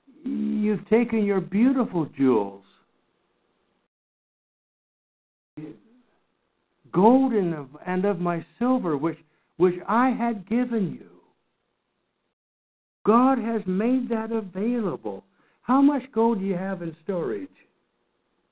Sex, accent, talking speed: male, American, 95 wpm